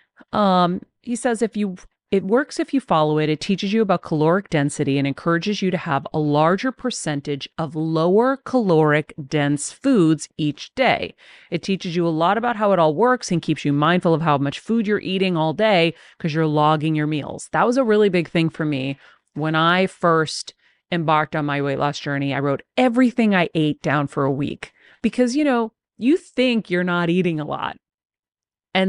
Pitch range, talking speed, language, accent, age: 155-195 Hz, 200 wpm, English, American, 40-59